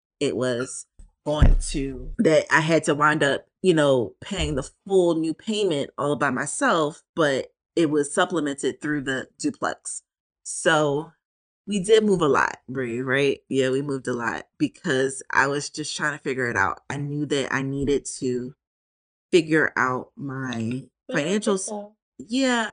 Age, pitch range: 30-49, 135-170 Hz